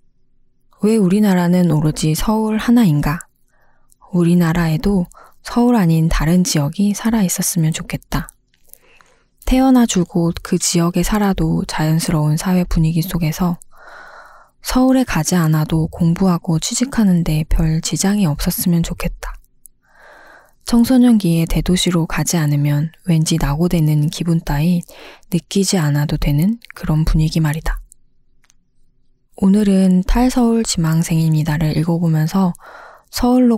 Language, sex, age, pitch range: Korean, female, 20-39, 155-200 Hz